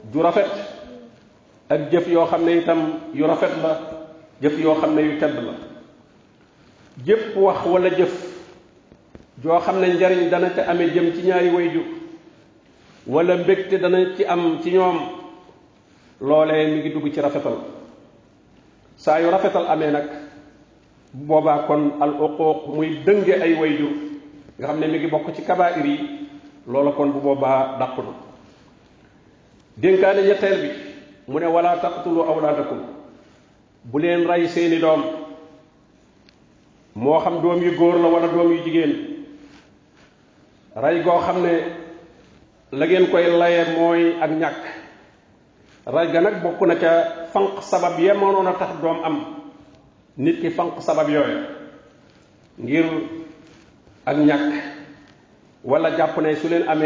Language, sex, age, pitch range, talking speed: French, male, 50-69, 150-180 Hz, 60 wpm